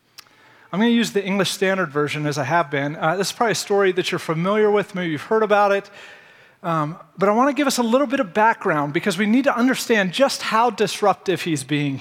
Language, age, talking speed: English, 30-49, 245 wpm